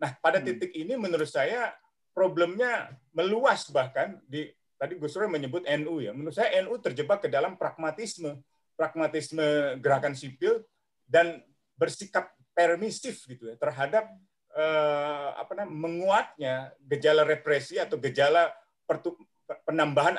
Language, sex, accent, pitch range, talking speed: Indonesian, male, native, 135-185 Hz, 120 wpm